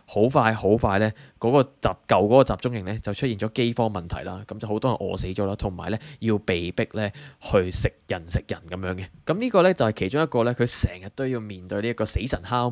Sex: male